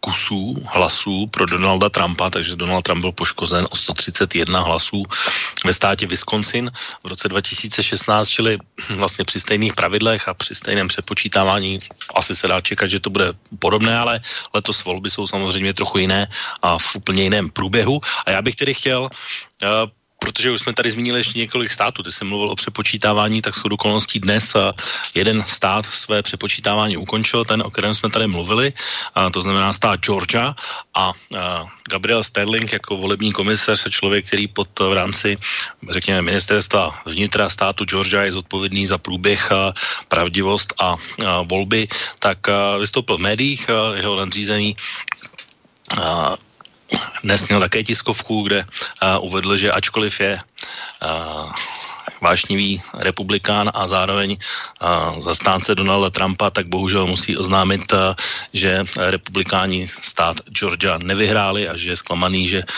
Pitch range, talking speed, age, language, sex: 95-105 Hz, 140 wpm, 30-49, Slovak, male